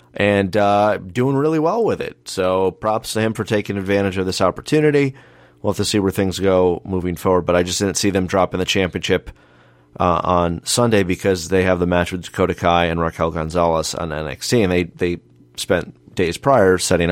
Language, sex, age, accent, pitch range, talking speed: English, male, 30-49, American, 90-105 Hz, 205 wpm